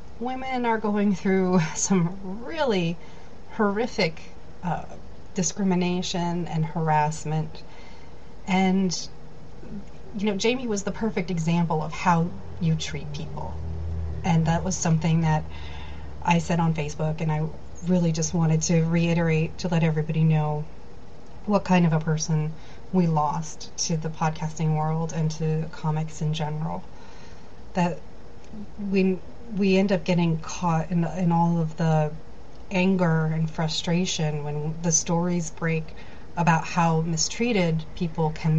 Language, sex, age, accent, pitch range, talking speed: English, female, 30-49, American, 160-185 Hz, 130 wpm